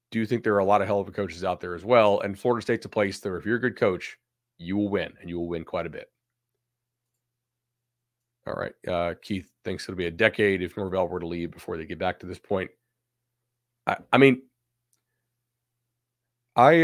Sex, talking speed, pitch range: male, 220 wpm, 100-120 Hz